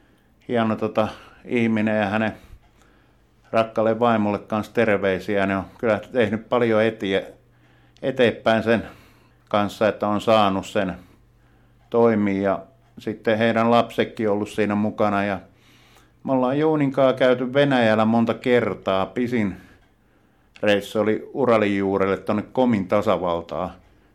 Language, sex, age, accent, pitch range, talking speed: Finnish, male, 50-69, native, 105-120 Hz, 115 wpm